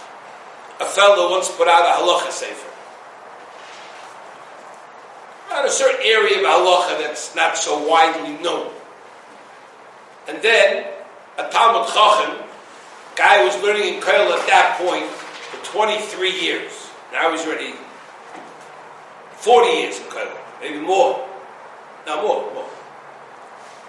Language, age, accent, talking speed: English, 60-79, American, 125 wpm